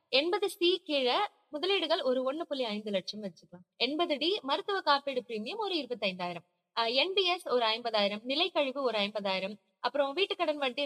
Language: Tamil